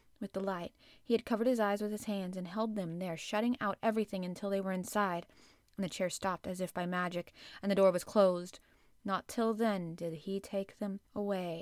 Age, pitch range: 20-39, 190-235 Hz